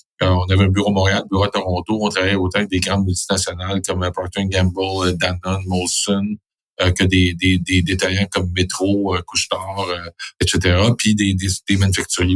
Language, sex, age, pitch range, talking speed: French, male, 50-69, 95-115 Hz, 200 wpm